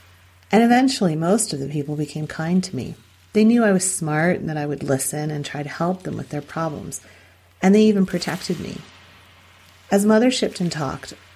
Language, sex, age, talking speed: English, female, 40-59, 195 wpm